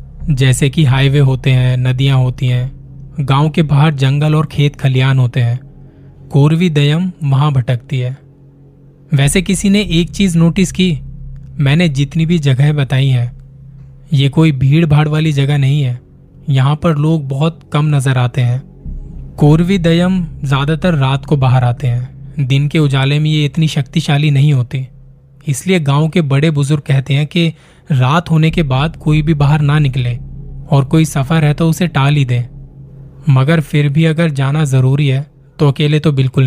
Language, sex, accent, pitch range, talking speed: Hindi, male, native, 135-155 Hz, 170 wpm